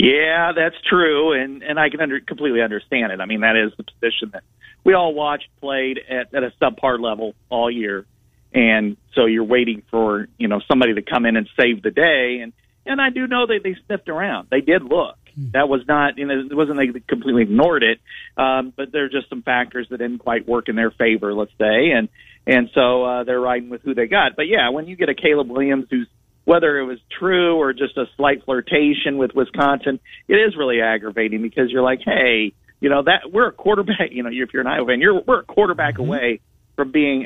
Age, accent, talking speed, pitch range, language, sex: 40-59, American, 230 wpm, 115-145 Hz, English, male